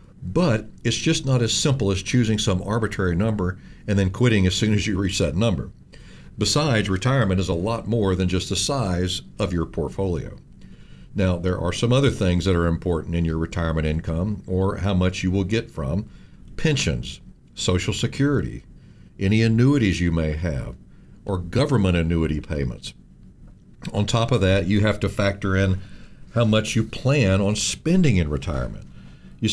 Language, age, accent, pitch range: English, 60-79, American, 90-120 Hz